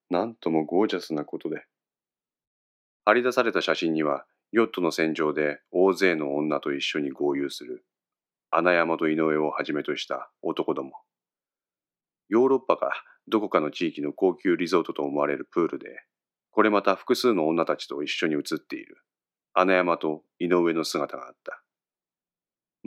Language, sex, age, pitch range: Japanese, male, 30-49, 80-115 Hz